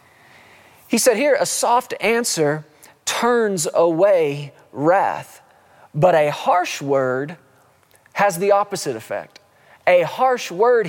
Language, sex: English, male